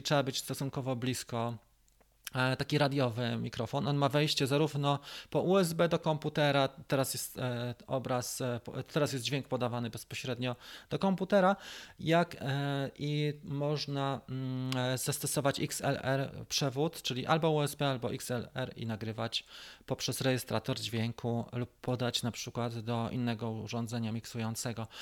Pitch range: 125-150 Hz